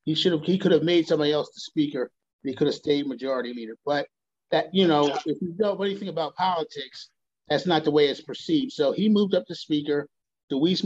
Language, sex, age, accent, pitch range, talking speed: English, male, 40-59, American, 145-180 Hz, 245 wpm